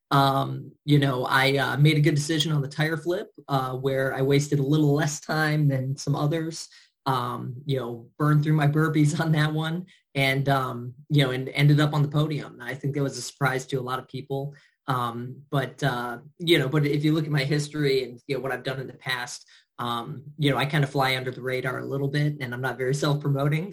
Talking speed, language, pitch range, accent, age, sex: 240 wpm, English, 130-150 Hz, American, 30-49, male